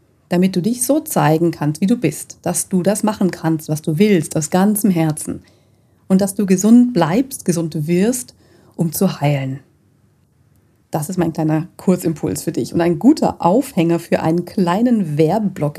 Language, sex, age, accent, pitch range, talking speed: German, female, 40-59, German, 160-200 Hz, 170 wpm